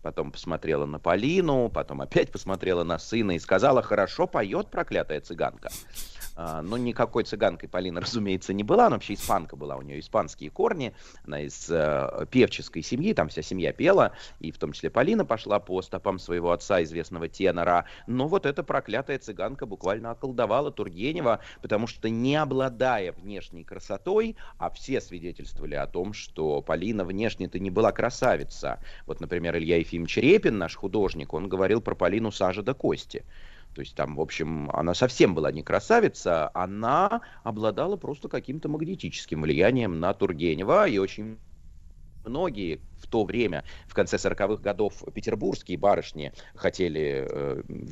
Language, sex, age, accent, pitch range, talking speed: Russian, male, 30-49, native, 85-115 Hz, 155 wpm